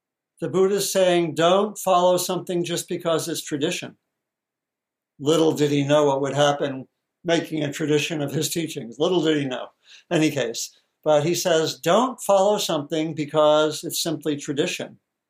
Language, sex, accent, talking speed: English, male, American, 155 wpm